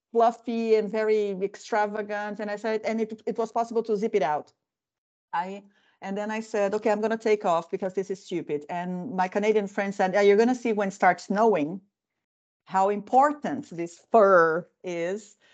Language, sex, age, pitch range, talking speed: Finnish, female, 50-69, 180-225 Hz, 190 wpm